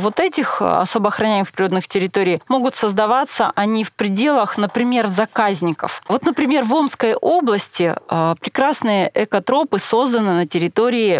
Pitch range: 195-240 Hz